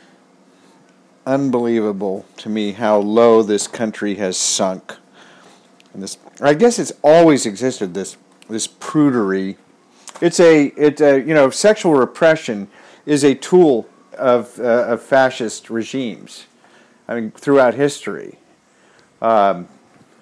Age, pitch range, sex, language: 50-69, 115-150 Hz, male, English